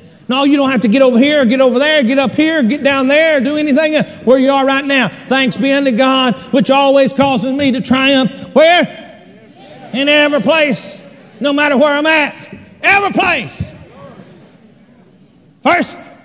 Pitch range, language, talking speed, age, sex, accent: 270-355 Hz, English, 170 wpm, 50-69, male, American